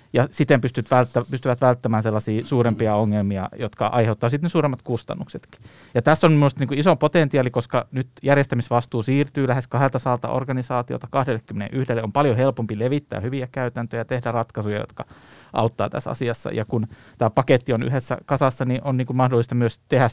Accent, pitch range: native, 115-135 Hz